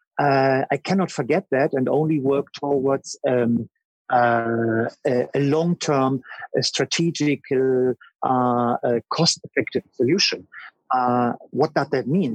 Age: 50-69